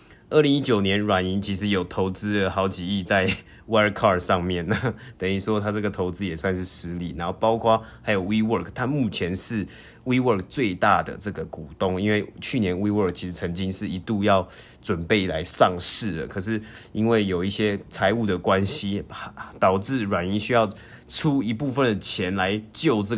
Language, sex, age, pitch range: Chinese, male, 20-39, 95-110 Hz